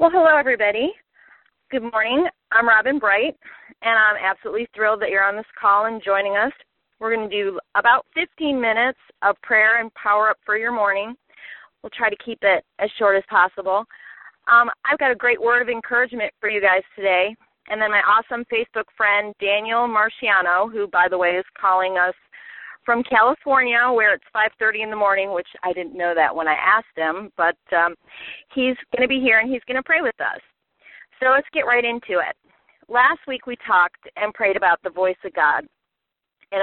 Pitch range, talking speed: 195-240 Hz, 195 wpm